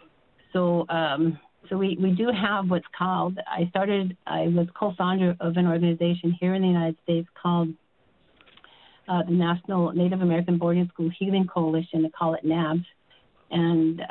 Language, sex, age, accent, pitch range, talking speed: English, female, 50-69, American, 165-180 Hz, 155 wpm